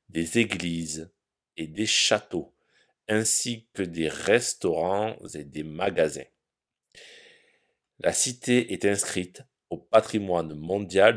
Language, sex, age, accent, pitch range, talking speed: French, male, 50-69, French, 85-135 Hz, 100 wpm